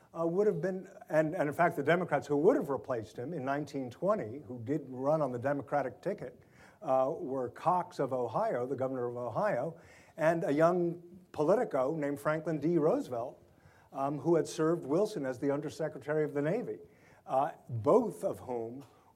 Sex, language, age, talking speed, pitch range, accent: male, English, 50-69, 175 wpm, 130-165 Hz, American